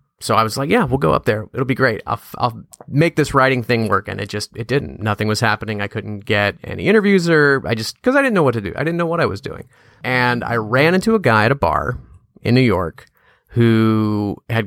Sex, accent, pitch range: male, American, 110-130 Hz